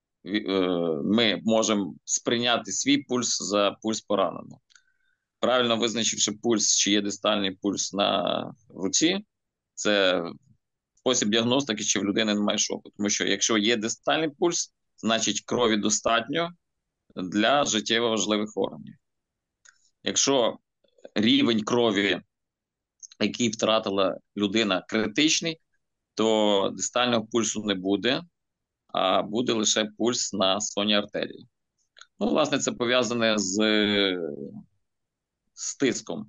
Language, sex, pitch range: Ukrainian, male, 100-115 Hz